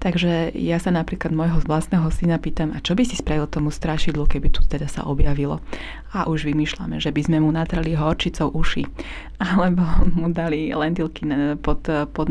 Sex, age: female, 20-39